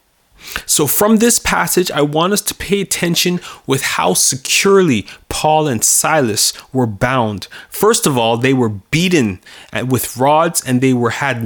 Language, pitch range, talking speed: English, 130-175 Hz, 155 wpm